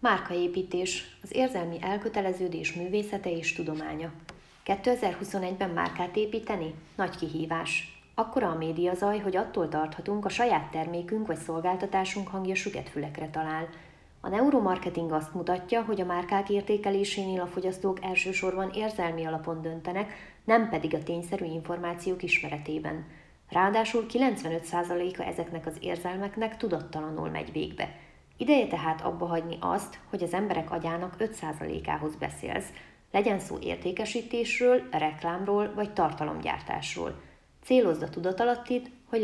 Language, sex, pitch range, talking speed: Hungarian, female, 165-205 Hz, 115 wpm